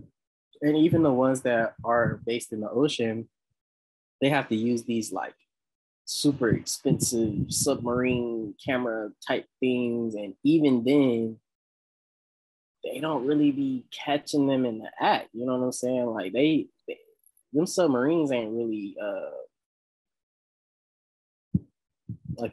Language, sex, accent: English, male, American